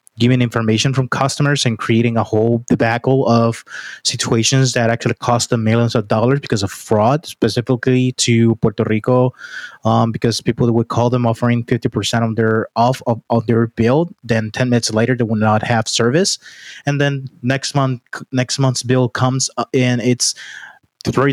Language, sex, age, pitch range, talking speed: English, male, 20-39, 115-130 Hz, 170 wpm